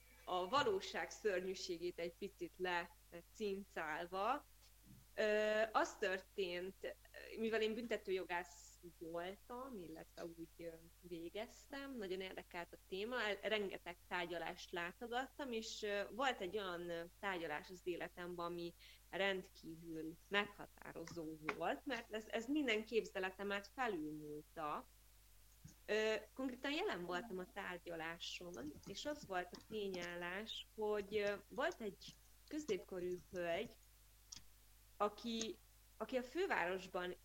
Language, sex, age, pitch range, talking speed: Hungarian, female, 20-39, 170-220 Hz, 90 wpm